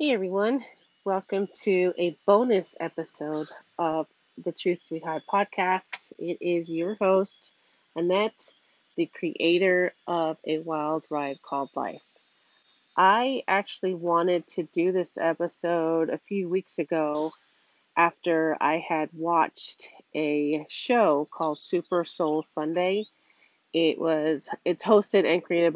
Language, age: English, 40-59